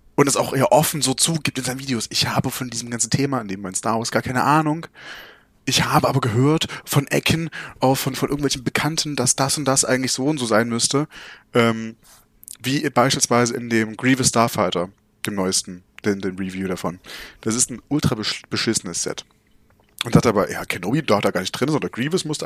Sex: male